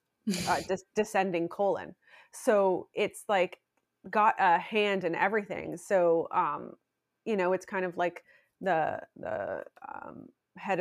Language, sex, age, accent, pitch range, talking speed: English, female, 30-49, American, 170-195 Hz, 130 wpm